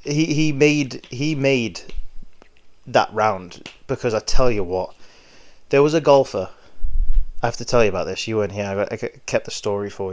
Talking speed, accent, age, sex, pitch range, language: 195 wpm, British, 20-39, male, 100-145 Hz, English